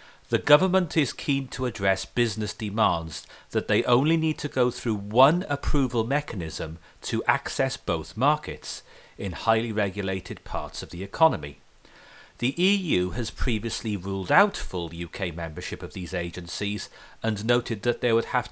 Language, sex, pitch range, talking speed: English, male, 95-125 Hz, 150 wpm